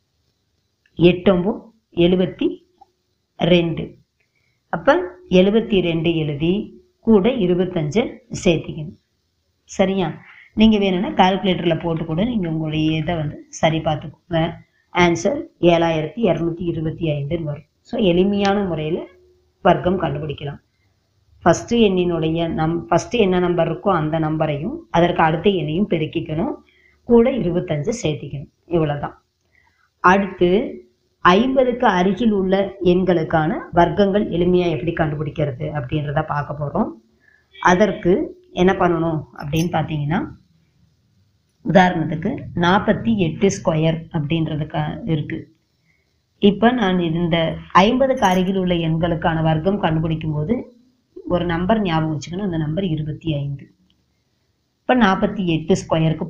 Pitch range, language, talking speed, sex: 160-195 Hz, Tamil, 95 wpm, male